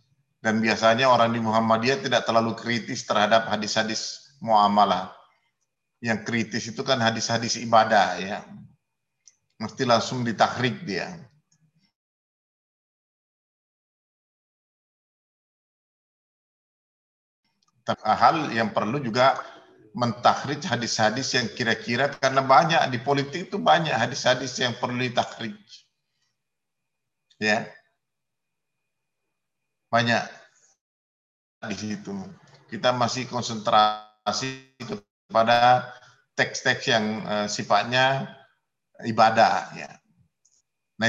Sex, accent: male, native